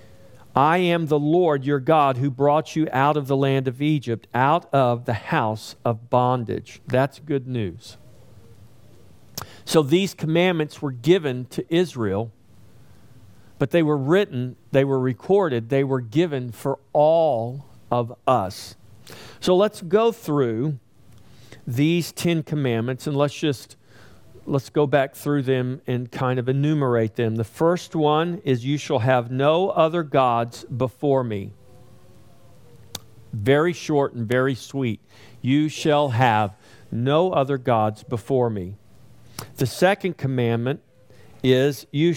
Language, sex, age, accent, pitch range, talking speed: English, male, 50-69, American, 120-150 Hz, 135 wpm